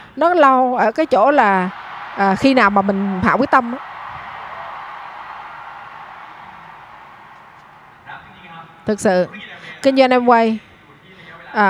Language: Vietnamese